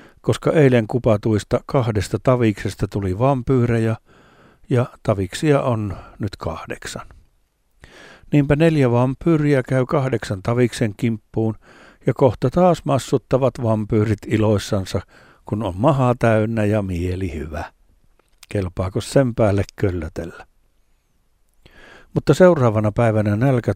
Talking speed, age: 100 wpm, 60-79